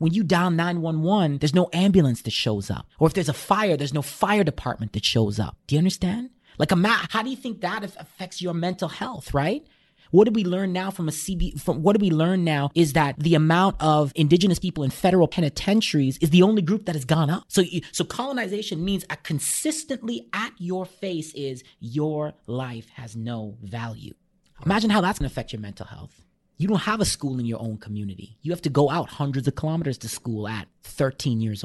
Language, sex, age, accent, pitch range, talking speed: English, male, 30-49, American, 135-195 Hz, 220 wpm